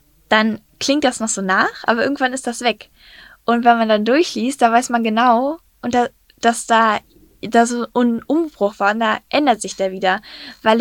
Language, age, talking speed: German, 10-29, 195 wpm